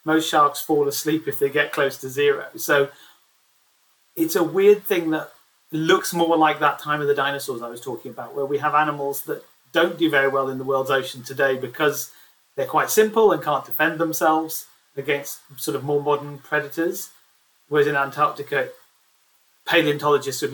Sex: male